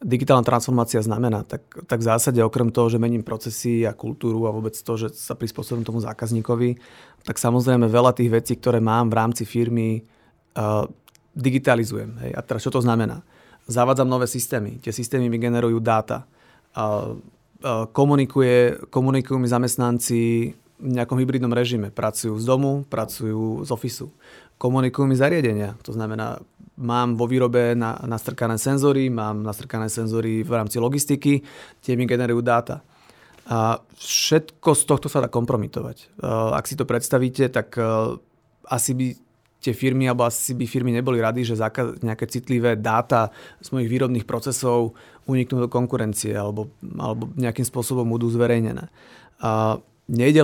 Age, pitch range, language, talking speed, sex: 30-49, 115-130 Hz, Slovak, 145 wpm, male